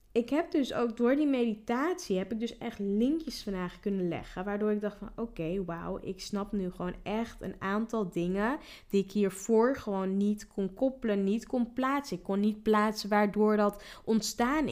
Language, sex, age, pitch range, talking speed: Dutch, female, 10-29, 195-240 Hz, 190 wpm